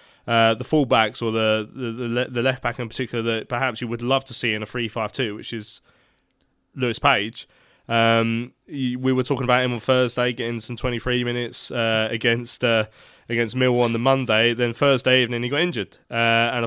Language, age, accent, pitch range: English, 20-39, British, 115-135 Hz